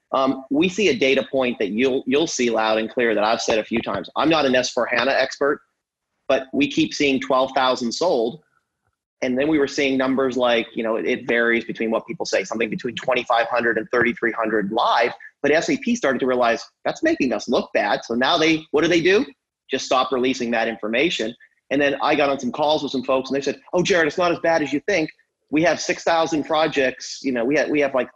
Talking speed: 230 wpm